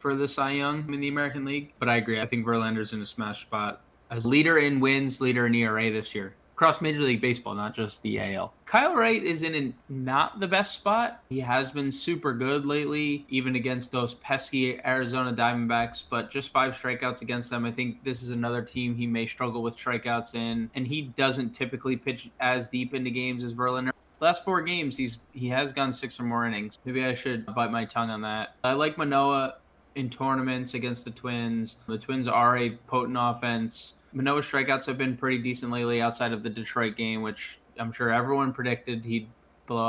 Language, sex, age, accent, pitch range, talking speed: English, male, 20-39, American, 115-135 Hz, 205 wpm